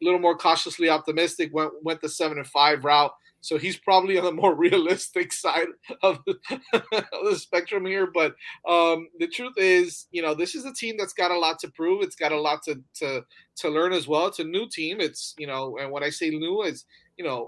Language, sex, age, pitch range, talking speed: English, male, 30-49, 140-195 Hz, 235 wpm